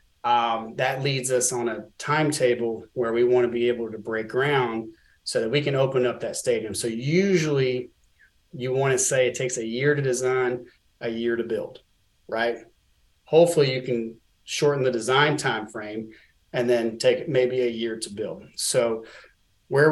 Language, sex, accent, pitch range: English, male, American, 115-130 Hz